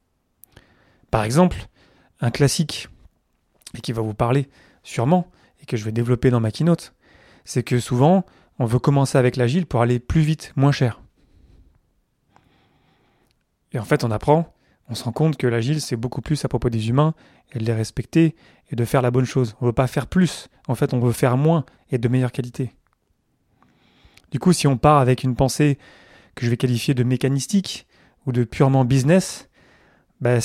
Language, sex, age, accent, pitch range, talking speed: French, male, 30-49, French, 120-150 Hz, 190 wpm